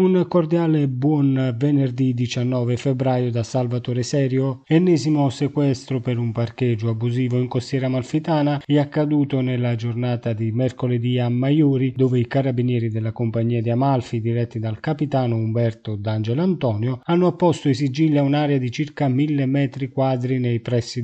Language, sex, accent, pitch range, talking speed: Italian, male, native, 120-145 Hz, 150 wpm